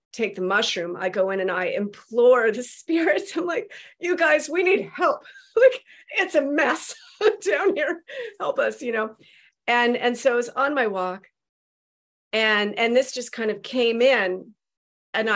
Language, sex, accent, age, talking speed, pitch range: English, female, American, 40-59, 175 wpm, 185-240 Hz